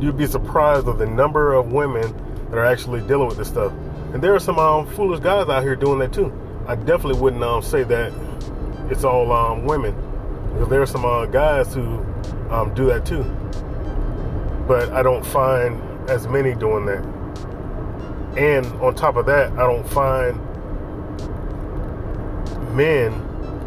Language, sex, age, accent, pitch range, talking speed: English, male, 20-39, American, 105-140 Hz, 165 wpm